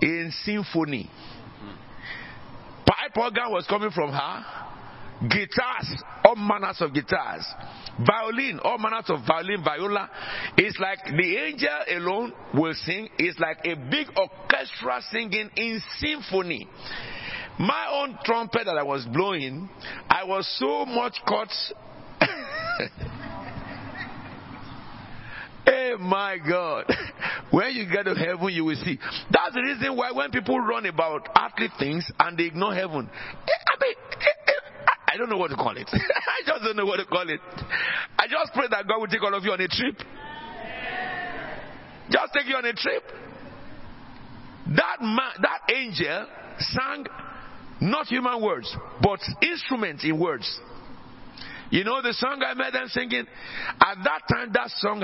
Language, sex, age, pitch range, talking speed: English, male, 50-69, 160-235 Hz, 145 wpm